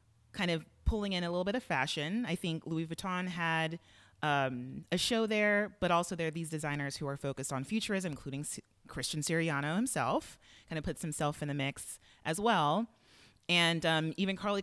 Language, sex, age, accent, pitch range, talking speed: English, female, 30-49, American, 145-185 Hz, 195 wpm